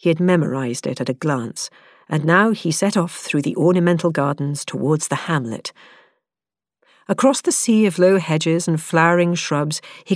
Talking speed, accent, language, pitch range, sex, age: 170 wpm, British, English, 150-205 Hz, female, 50-69